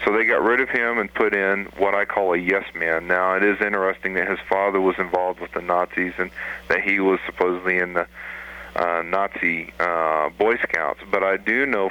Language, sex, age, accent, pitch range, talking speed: English, male, 40-59, American, 90-105 Hz, 210 wpm